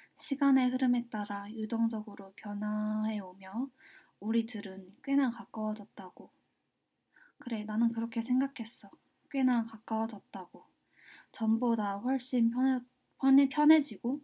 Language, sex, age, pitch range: Korean, female, 20-39, 210-255 Hz